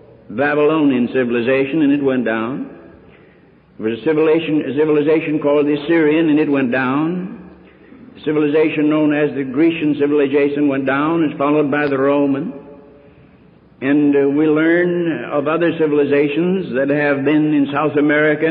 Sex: male